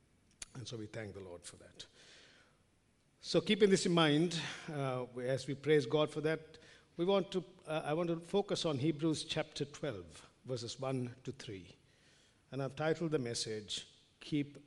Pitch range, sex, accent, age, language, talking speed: 120-155 Hz, male, Indian, 50-69, English, 170 wpm